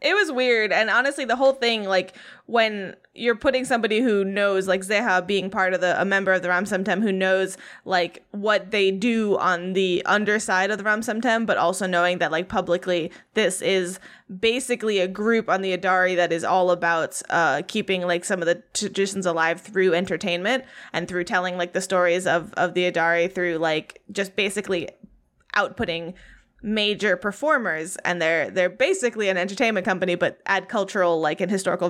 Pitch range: 180-230 Hz